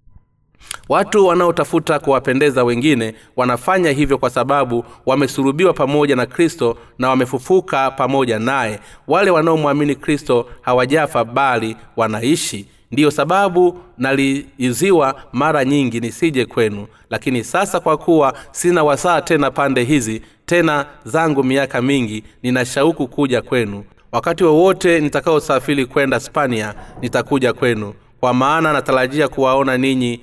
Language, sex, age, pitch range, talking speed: Swahili, male, 30-49, 120-145 Hz, 115 wpm